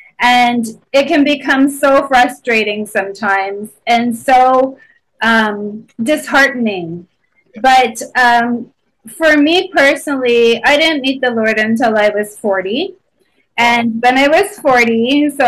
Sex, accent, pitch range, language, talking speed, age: female, American, 235-280 Hz, English, 120 wpm, 20-39